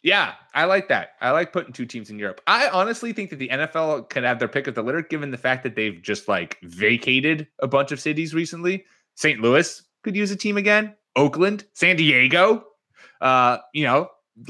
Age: 20-39